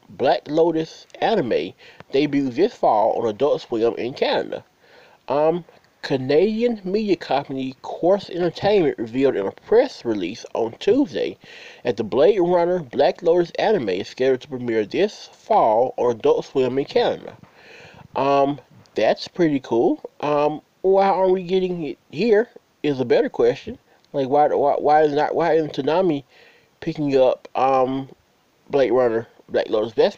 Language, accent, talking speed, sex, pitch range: English, American, 150 wpm, male, 140-195 Hz